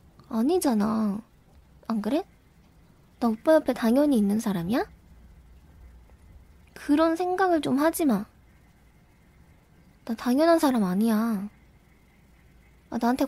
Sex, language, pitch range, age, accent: female, Korean, 205-280 Hz, 20-39, native